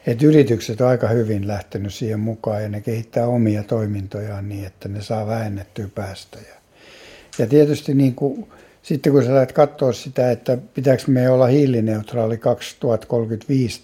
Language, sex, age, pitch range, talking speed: Finnish, male, 60-79, 105-120 Hz, 150 wpm